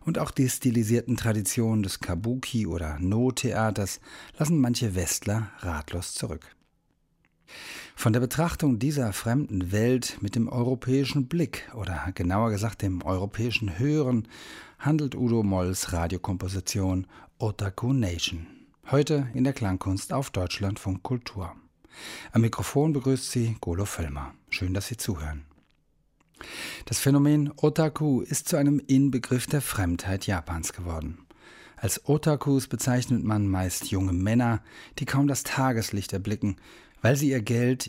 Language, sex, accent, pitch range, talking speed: German, male, German, 95-130 Hz, 125 wpm